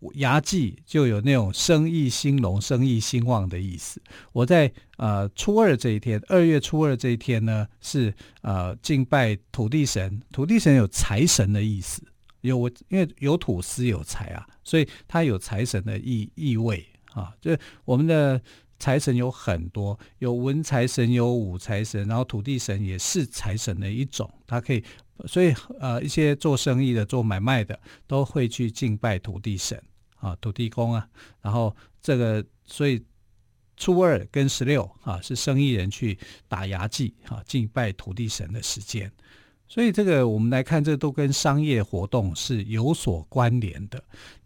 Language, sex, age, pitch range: Chinese, male, 50-69, 105-140 Hz